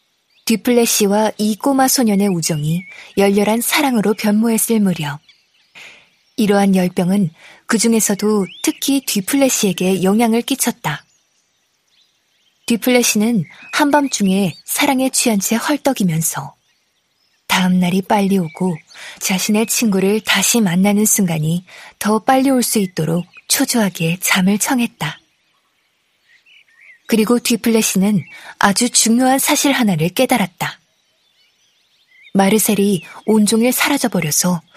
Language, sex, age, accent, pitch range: Korean, female, 20-39, native, 185-235 Hz